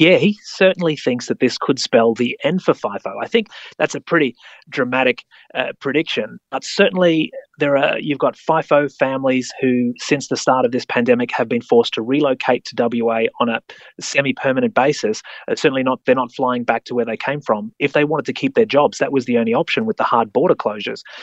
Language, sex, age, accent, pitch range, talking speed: English, male, 30-49, Australian, 120-180 Hz, 210 wpm